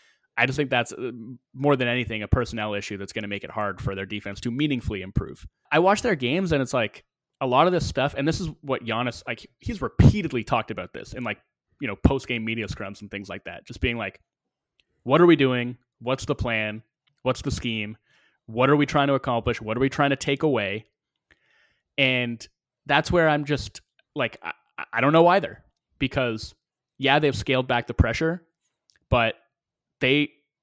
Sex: male